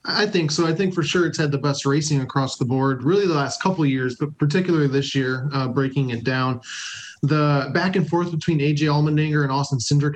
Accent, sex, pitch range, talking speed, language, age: American, male, 135-165 Hz, 230 wpm, English, 20-39